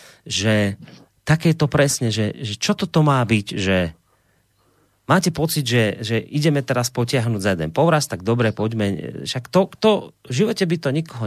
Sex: male